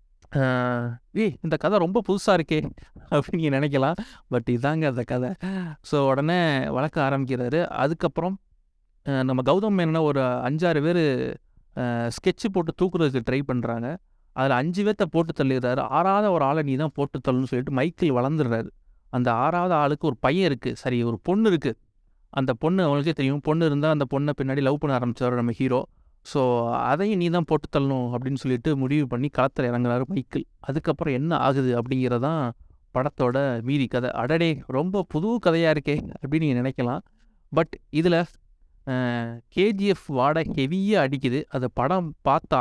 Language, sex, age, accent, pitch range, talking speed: Tamil, male, 30-49, native, 125-165 Hz, 145 wpm